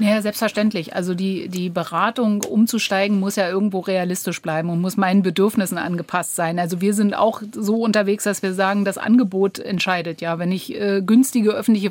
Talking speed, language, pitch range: 180 wpm, German, 190-220 Hz